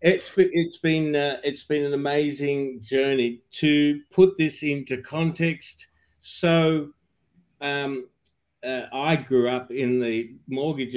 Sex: male